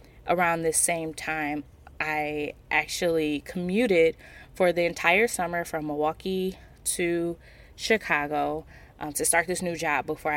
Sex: female